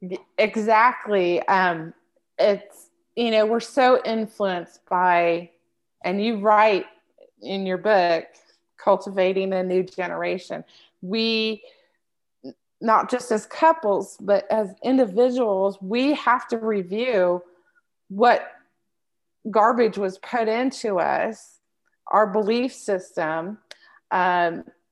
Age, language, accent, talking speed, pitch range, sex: 30-49, English, American, 100 wpm, 180-240 Hz, female